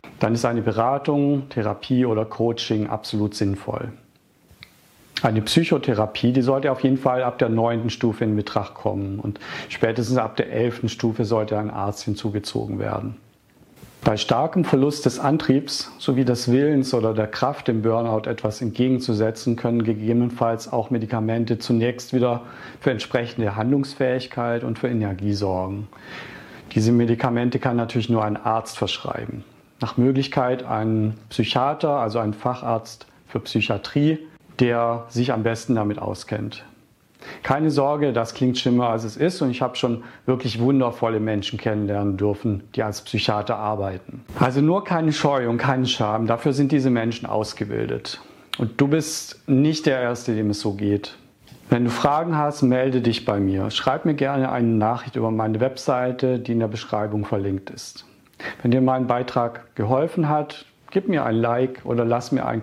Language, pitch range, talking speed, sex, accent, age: German, 110-130 Hz, 155 wpm, male, German, 50-69